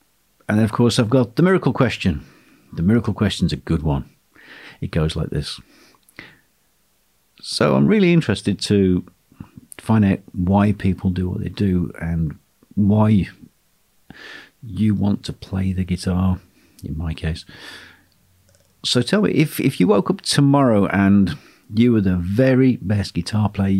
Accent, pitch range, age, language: British, 90-115 Hz, 50-69, English